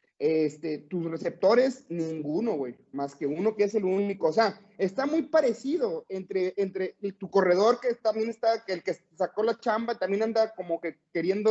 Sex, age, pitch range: male, 30-49, 175-245 Hz